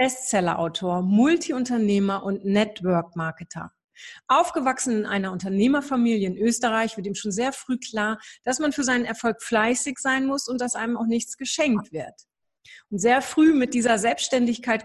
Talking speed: 150 wpm